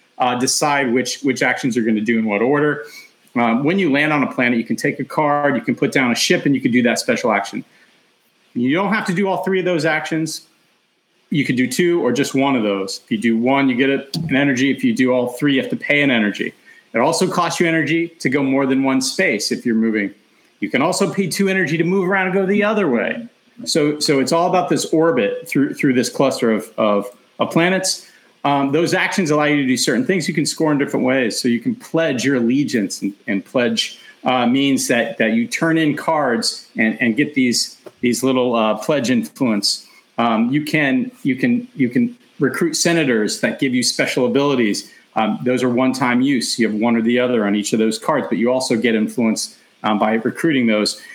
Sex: male